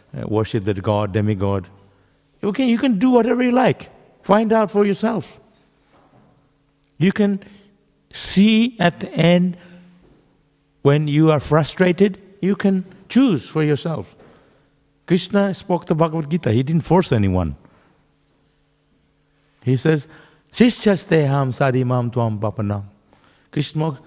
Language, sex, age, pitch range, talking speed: English, male, 60-79, 130-170 Hz, 110 wpm